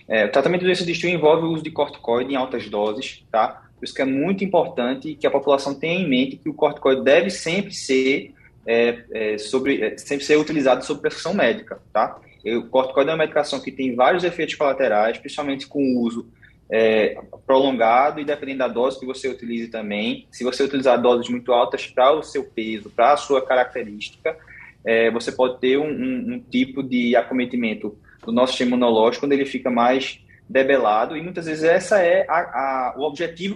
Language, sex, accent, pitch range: Portuguese, male, Brazilian, 125-155 Hz